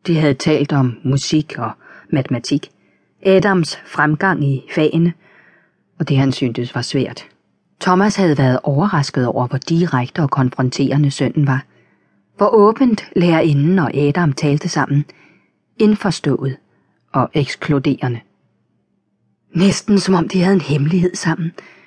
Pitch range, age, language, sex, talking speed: 135-180 Hz, 30-49, Danish, female, 125 wpm